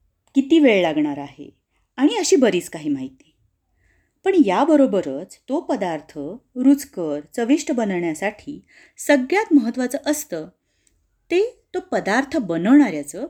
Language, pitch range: Marathi, 180-295 Hz